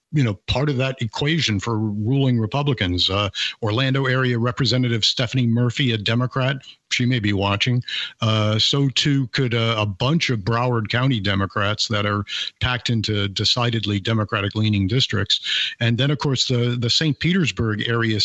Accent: American